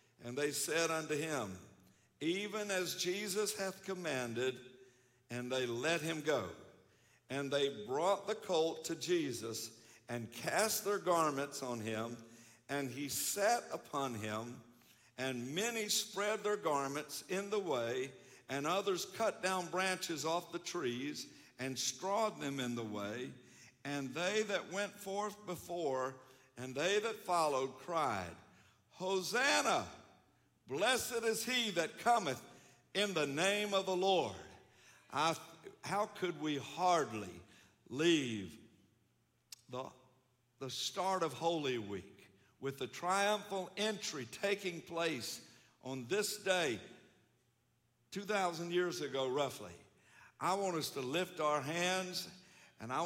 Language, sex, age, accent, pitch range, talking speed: English, male, 60-79, American, 130-185 Hz, 130 wpm